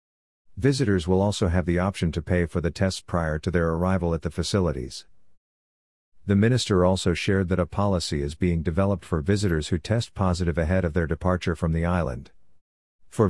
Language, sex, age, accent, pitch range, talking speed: English, male, 50-69, American, 85-100 Hz, 185 wpm